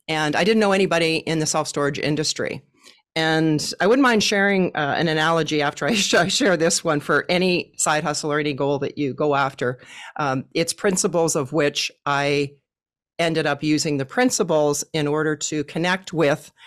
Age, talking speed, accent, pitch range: 40-59, 180 wpm, American, 145-180 Hz